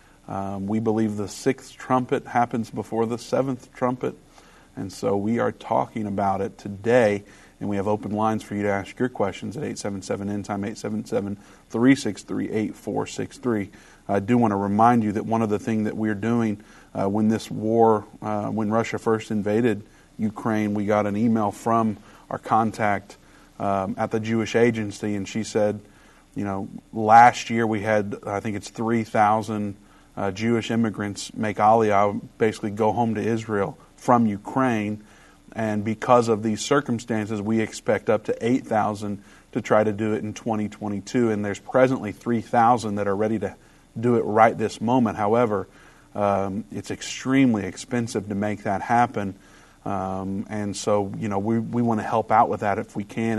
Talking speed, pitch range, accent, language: 165 wpm, 100-115 Hz, American, English